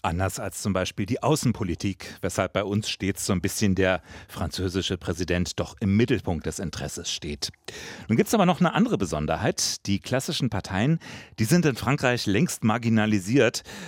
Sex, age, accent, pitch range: male, 40-59, German, 95-125 Hz